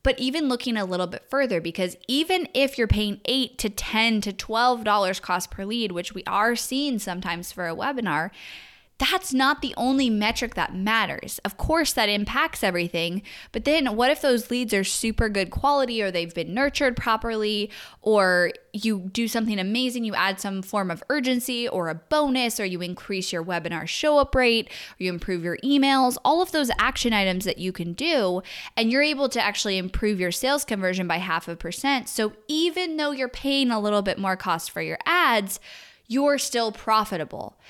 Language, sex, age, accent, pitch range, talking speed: English, female, 10-29, American, 185-260 Hz, 190 wpm